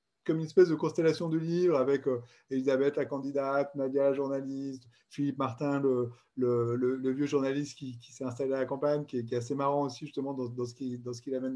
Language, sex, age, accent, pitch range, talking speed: French, male, 30-49, French, 120-155 Hz, 230 wpm